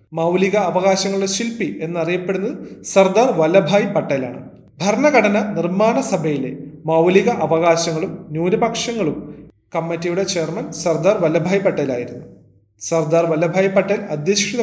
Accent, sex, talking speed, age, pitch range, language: native, male, 95 wpm, 30-49, 155-215 Hz, Malayalam